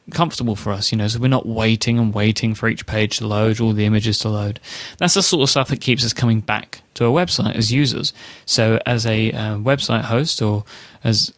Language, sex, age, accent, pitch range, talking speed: English, male, 20-39, British, 110-135 Hz, 230 wpm